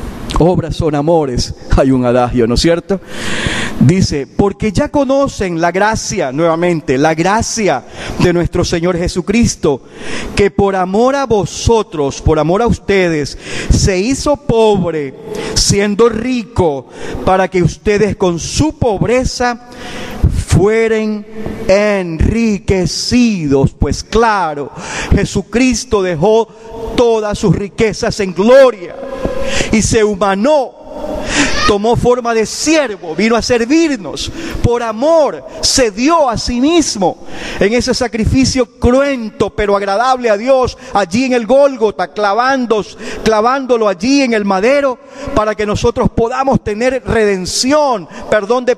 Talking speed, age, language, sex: 120 wpm, 40-59, Spanish, male